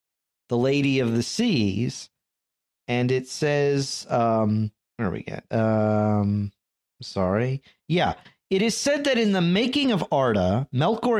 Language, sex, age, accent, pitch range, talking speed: English, male, 40-59, American, 115-165 Hz, 145 wpm